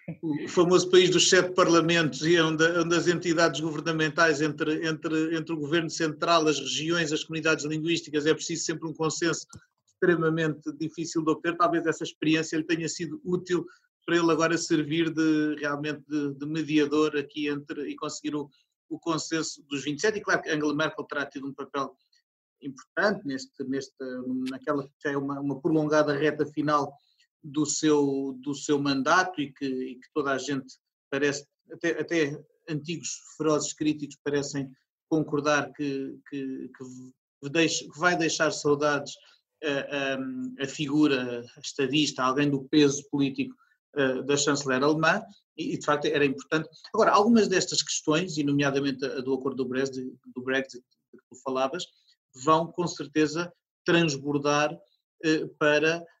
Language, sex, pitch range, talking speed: Portuguese, male, 140-165 Hz, 145 wpm